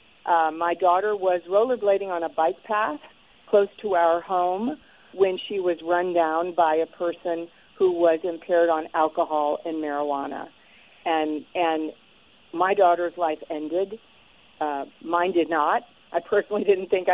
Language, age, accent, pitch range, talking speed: English, 50-69, American, 170-230 Hz, 145 wpm